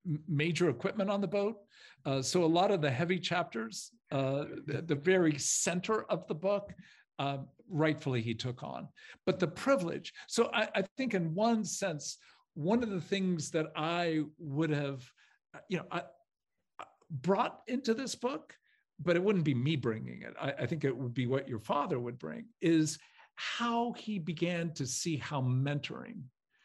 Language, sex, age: English, male, 50-69